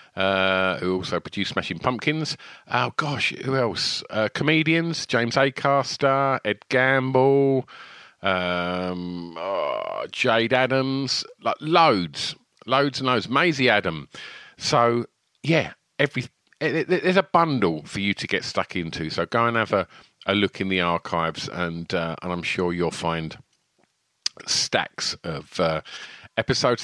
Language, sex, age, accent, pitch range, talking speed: English, male, 40-59, British, 95-150 Hz, 140 wpm